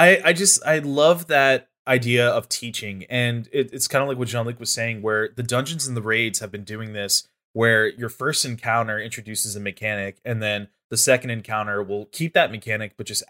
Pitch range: 110-155 Hz